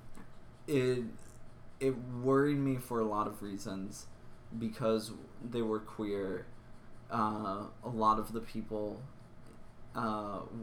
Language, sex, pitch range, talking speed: English, male, 105-120 Hz, 115 wpm